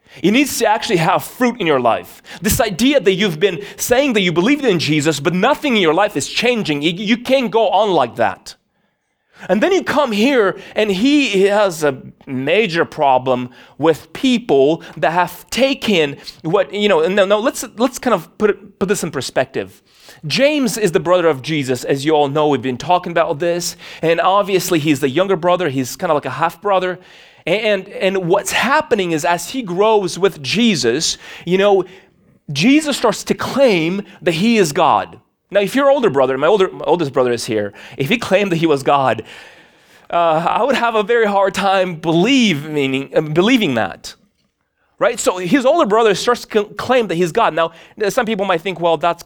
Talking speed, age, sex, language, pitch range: 195 wpm, 30-49, male, English, 165-225 Hz